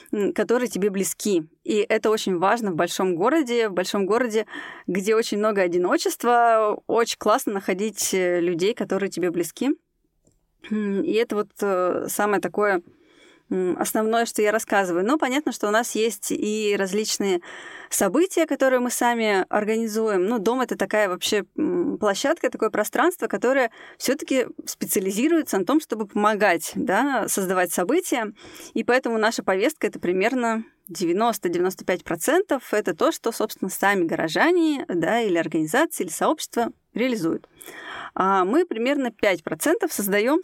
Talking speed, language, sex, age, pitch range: 140 wpm, Russian, female, 20-39, 200-300 Hz